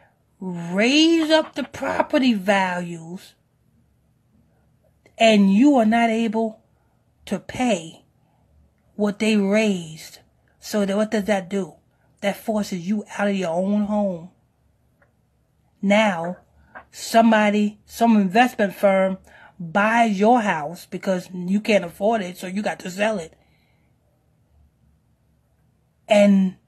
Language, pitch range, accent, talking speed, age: English, 180-220 Hz, American, 110 wpm, 30-49